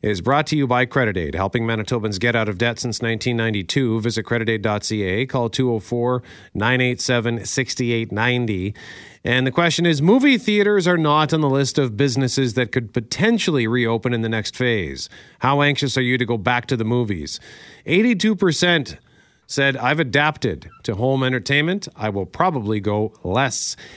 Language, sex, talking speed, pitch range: English, male, 155 wpm, 105-140 Hz